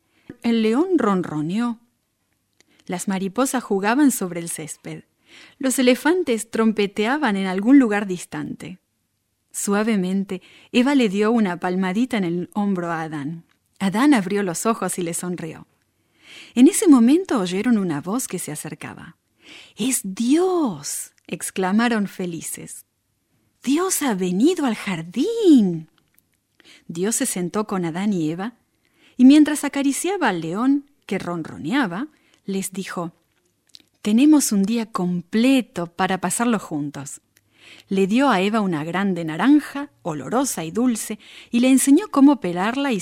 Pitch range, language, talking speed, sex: 180-260 Hz, English, 125 wpm, female